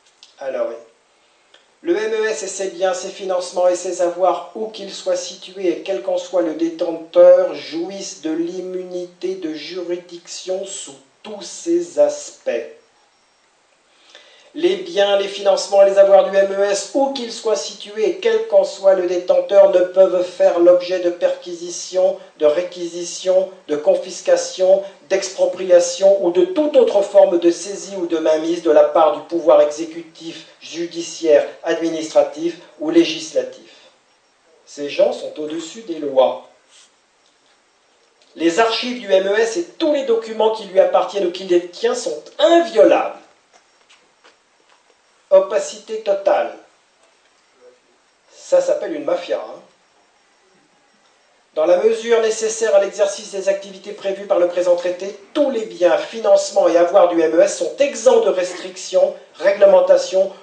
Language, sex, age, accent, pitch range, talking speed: French, male, 50-69, French, 180-280 Hz, 135 wpm